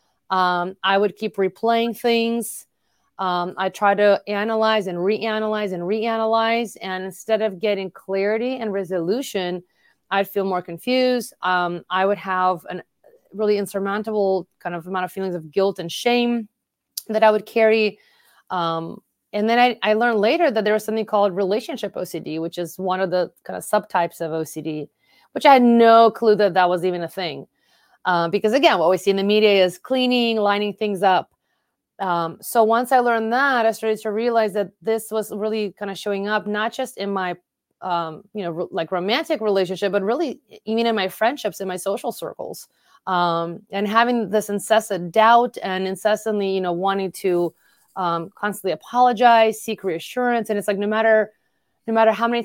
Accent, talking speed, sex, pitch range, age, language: American, 185 wpm, female, 185-225 Hz, 30-49, English